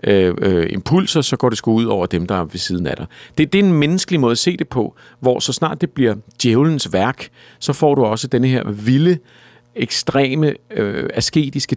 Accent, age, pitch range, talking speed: native, 50-69, 110-140 Hz, 220 wpm